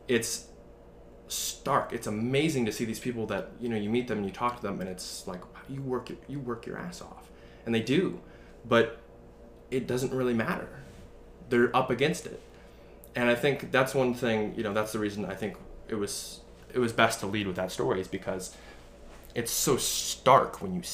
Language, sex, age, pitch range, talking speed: English, male, 20-39, 95-125 Hz, 205 wpm